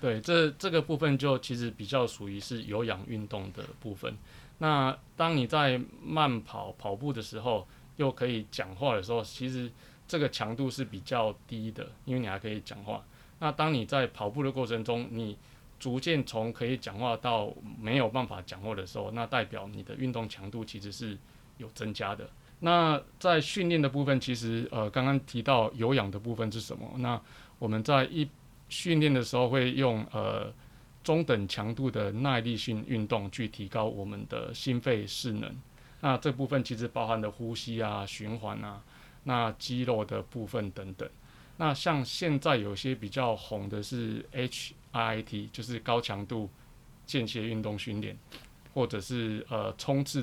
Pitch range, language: 110-135 Hz, Chinese